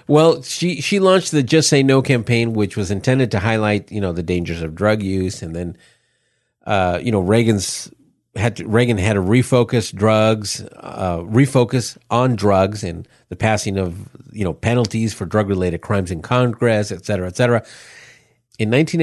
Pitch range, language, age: 105-130 Hz, English, 50-69